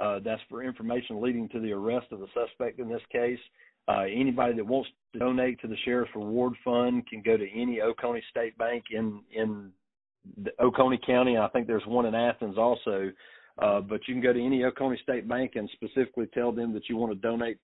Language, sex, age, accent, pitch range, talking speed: English, male, 40-59, American, 110-125 Hz, 215 wpm